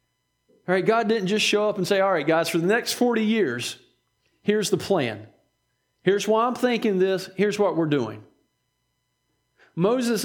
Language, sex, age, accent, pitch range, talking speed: English, male, 40-59, American, 165-215 Hz, 175 wpm